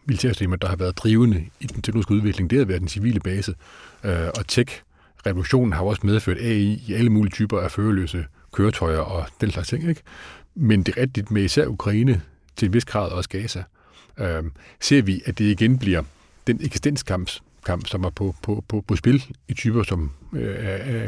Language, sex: Danish, male